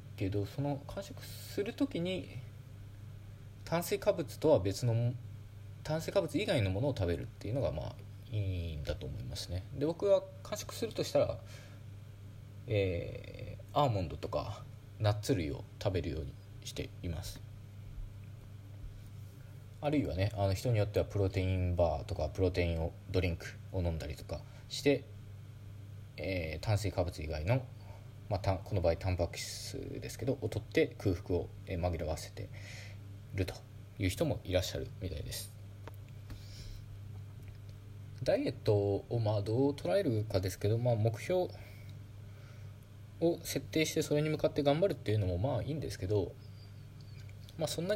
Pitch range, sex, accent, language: 100-120 Hz, male, native, Japanese